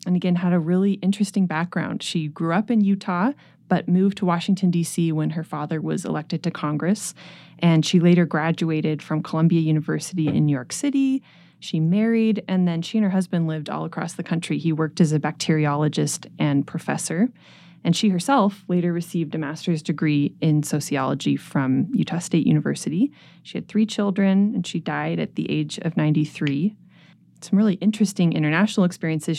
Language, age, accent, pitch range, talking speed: English, 20-39, American, 155-190 Hz, 175 wpm